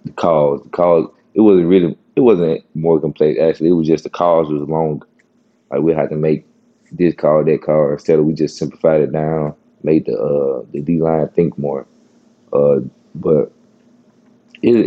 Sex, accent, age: male, American, 20-39